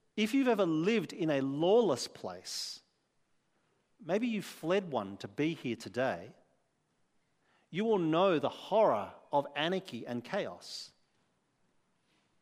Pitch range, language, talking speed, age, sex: 150-215 Hz, English, 120 wpm, 40-59, male